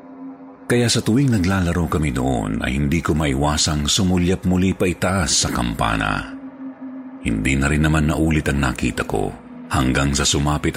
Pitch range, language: 70-90 Hz, Filipino